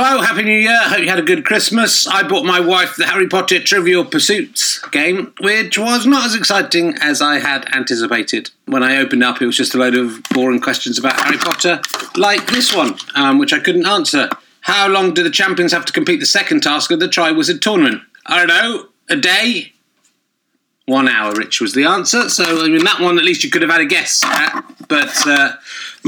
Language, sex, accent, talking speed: English, male, British, 220 wpm